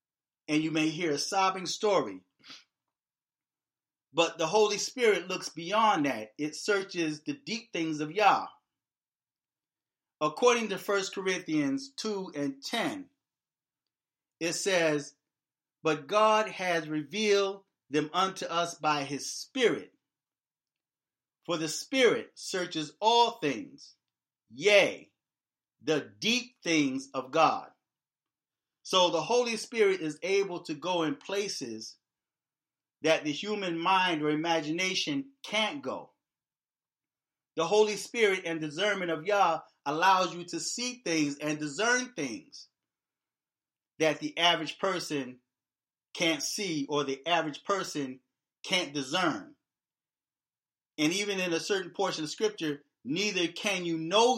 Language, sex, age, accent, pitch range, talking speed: English, male, 40-59, American, 150-200 Hz, 120 wpm